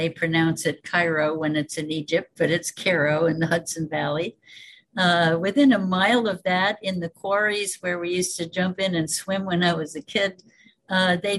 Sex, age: female, 60-79